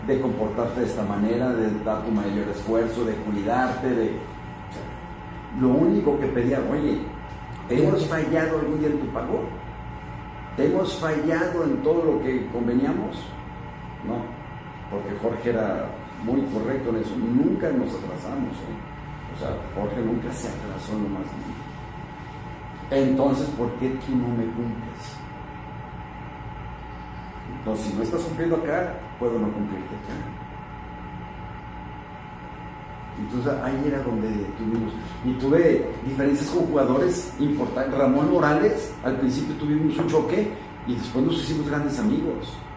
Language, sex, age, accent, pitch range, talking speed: Spanish, male, 50-69, Mexican, 110-145 Hz, 135 wpm